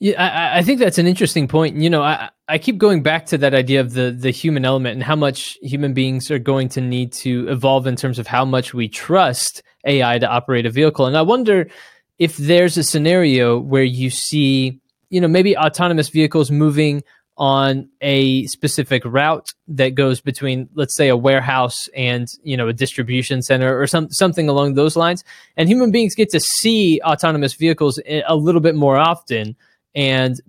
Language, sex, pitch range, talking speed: English, male, 130-165 Hz, 195 wpm